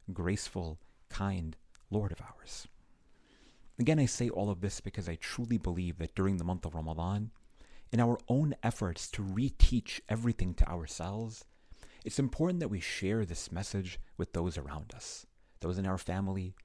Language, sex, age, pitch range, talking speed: English, male, 40-59, 90-115 Hz, 160 wpm